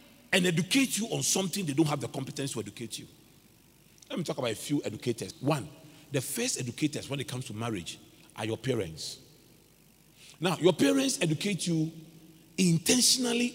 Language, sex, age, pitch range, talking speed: English, male, 40-59, 135-165 Hz, 170 wpm